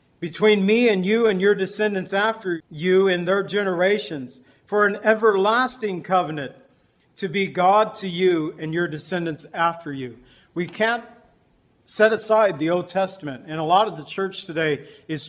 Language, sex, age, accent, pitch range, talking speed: English, male, 50-69, American, 170-205 Hz, 160 wpm